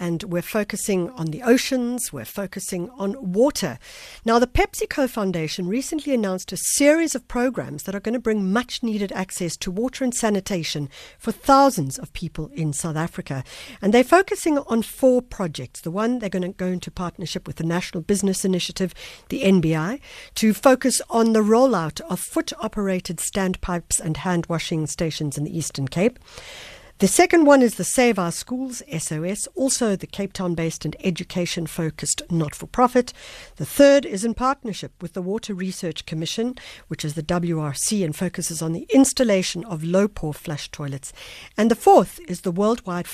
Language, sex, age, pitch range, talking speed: English, female, 60-79, 165-235 Hz, 165 wpm